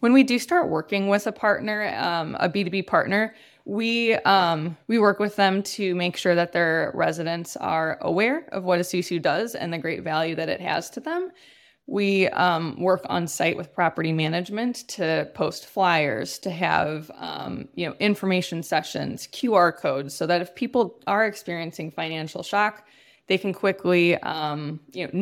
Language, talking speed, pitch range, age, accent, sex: English, 175 wpm, 170-215 Hz, 20-39, American, female